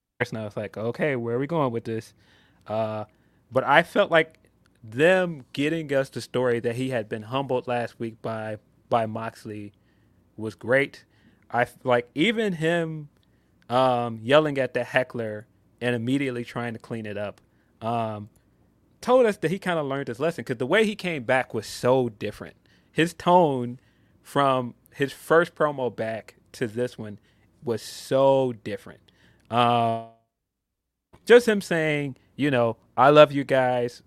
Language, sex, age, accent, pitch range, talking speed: English, male, 20-39, American, 115-140 Hz, 160 wpm